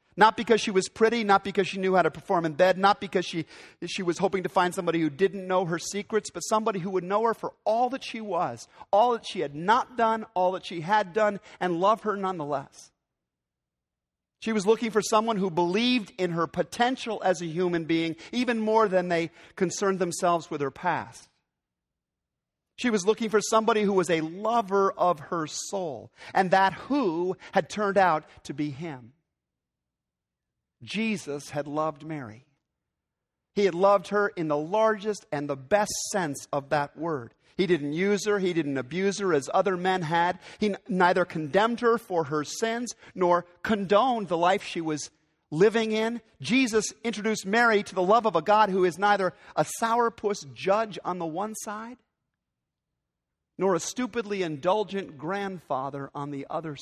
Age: 50-69